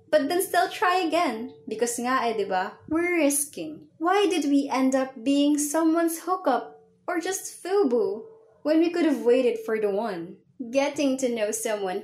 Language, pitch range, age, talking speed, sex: English, 215-310 Hz, 20-39, 170 wpm, female